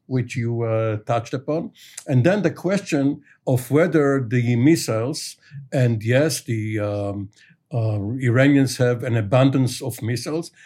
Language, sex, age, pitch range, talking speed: English, male, 60-79, 125-155 Hz, 135 wpm